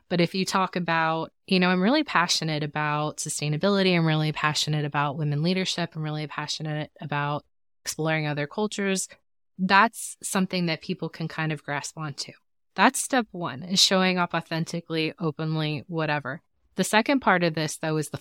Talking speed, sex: 170 wpm, female